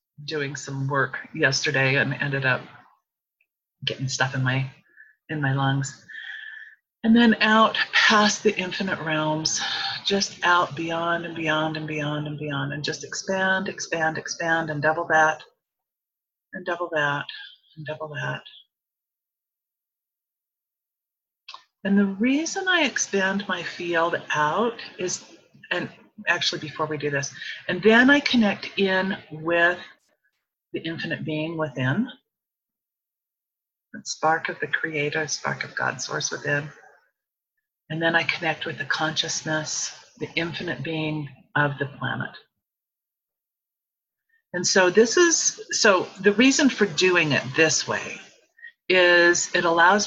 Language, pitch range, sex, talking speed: English, 150-195 Hz, female, 130 wpm